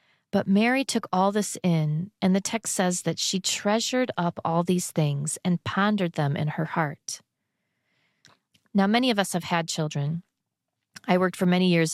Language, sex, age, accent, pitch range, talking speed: English, female, 40-59, American, 160-200 Hz, 175 wpm